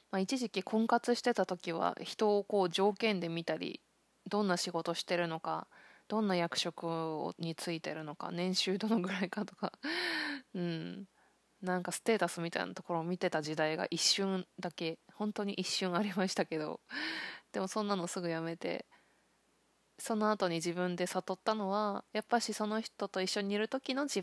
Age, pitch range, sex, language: 20-39, 175-210 Hz, female, Japanese